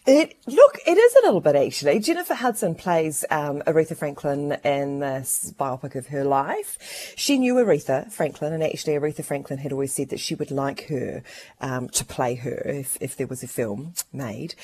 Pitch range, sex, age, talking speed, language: 140-195 Hz, female, 30-49, 195 wpm, English